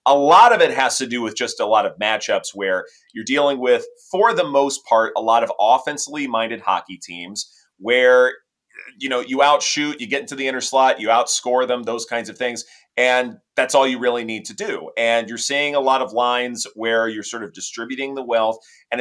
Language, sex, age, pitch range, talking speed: English, male, 30-49, 110-145 Hz, 220 wpm